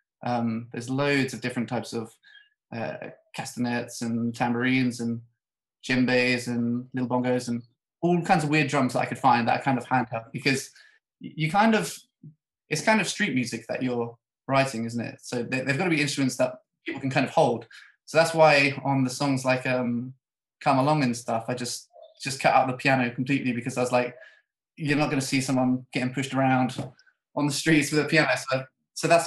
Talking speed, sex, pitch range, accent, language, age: 205 wpm, male, 120-145 Hz, British, English, 20-39